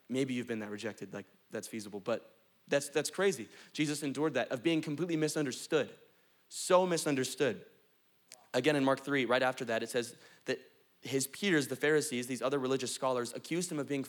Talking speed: 185 wpm